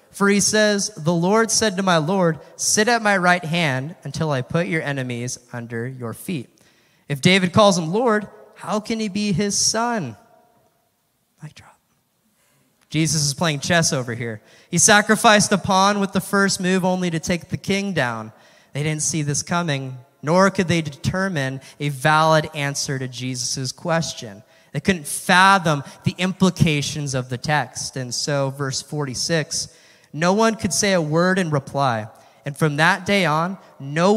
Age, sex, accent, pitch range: 20-39, male, American, 135-180 Hz